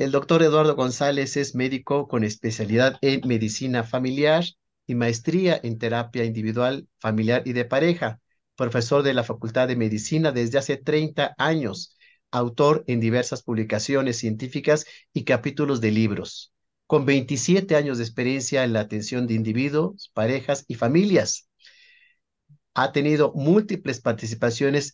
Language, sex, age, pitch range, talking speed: Spanish, male, 50-69, 120-150 Hz, 135 wpm